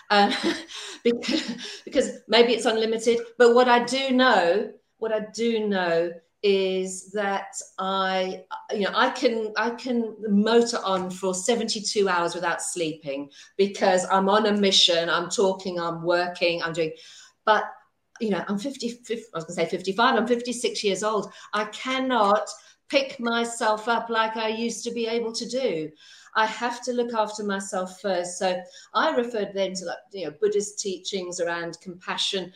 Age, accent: 50-69, British